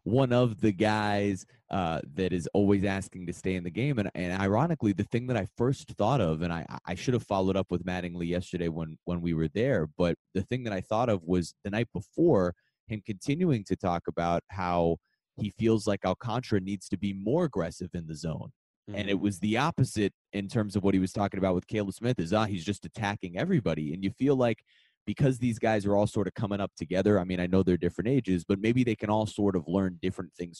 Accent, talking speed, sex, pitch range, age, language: American, 235 wpm, male, 85-110 Hz, 20-39, English